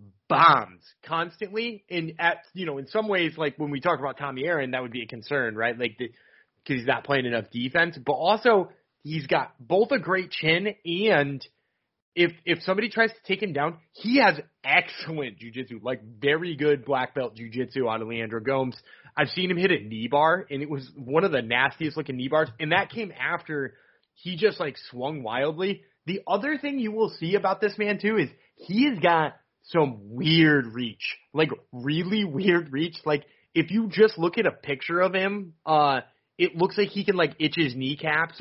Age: 20-39